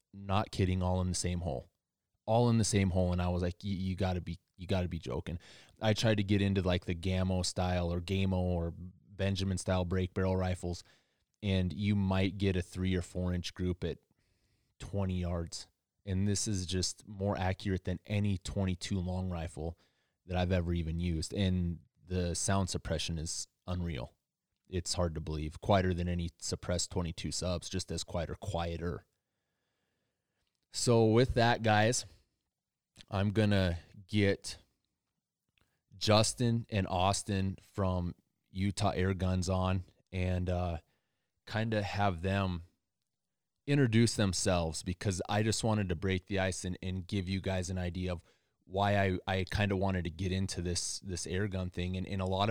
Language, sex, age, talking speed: English, male, 20-39, 170 wpm